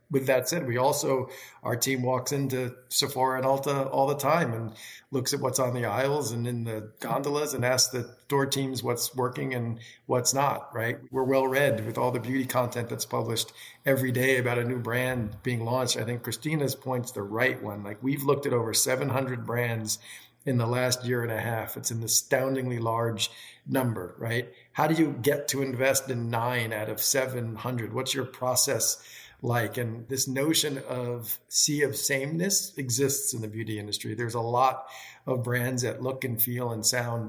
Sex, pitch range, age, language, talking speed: male, 120-140 Hz, 50-69, English, 190 wpm